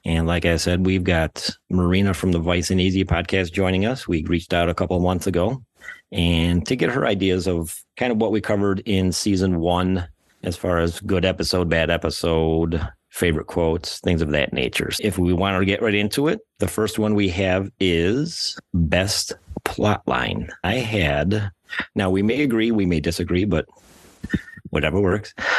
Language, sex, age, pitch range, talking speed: English, male, 40-59, 85-95 Hz, 185 wpm